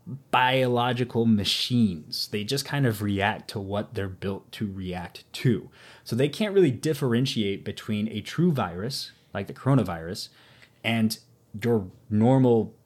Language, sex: English, male